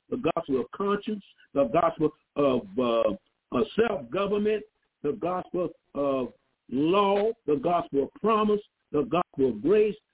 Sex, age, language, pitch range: male, 60-79, English, 155-255 Hz